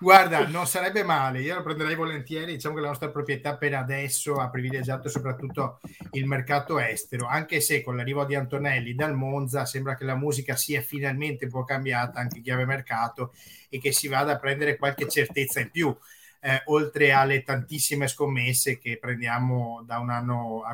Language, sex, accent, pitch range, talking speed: Italian, male, native, 125-145 Hz, 180 wpm